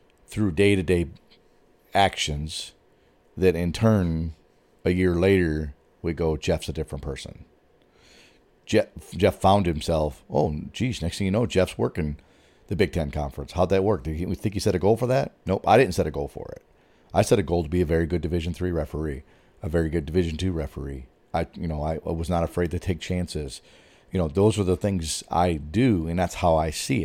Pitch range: 80-100 Hz